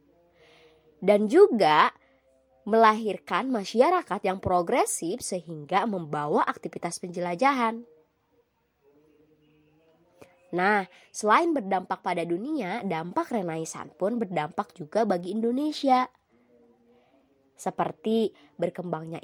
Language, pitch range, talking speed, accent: Indonesian, 160-240 Hz, 75 wpm, native